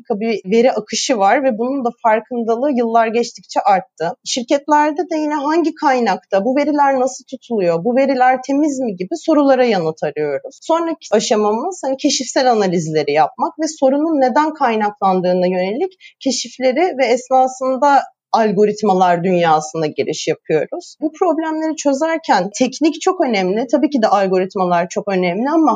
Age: 30-49